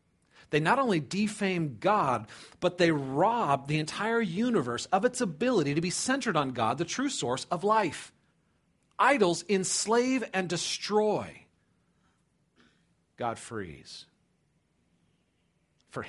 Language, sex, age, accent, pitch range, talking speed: English, male, 40-59, American, 110-165 Hz, 115 wpm